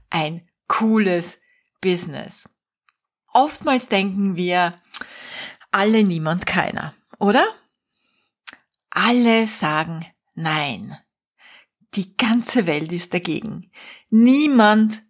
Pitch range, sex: 180-225 Hz, female